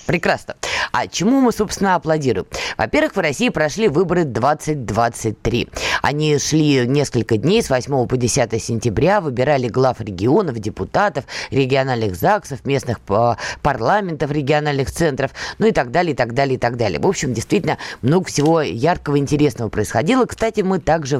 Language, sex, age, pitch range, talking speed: Russian, female, 20-39, 120-165 Hz, 145 wpm